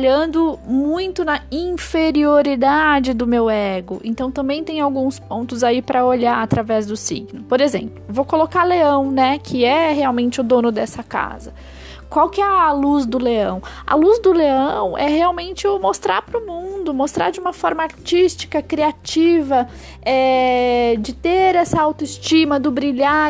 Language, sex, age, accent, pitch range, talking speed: Portuguese, female, 10-29, Brazilian, 245-315 Hz, 160 wpm